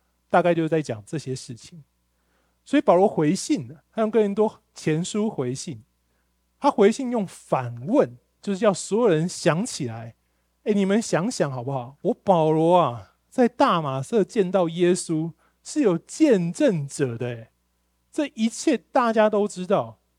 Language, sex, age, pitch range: Chinese, male, 20-39, 135-200 Hz